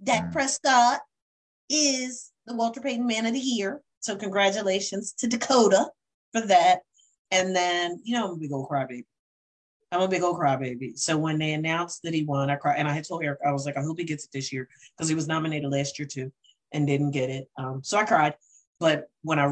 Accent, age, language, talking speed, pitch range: American, 40-59, English, 220 wpm, 135-185 Hz